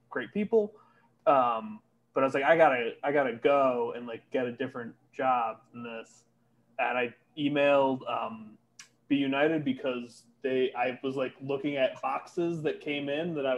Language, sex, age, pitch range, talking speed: English, male, 20-39, 120-155 Hz, 170 wpm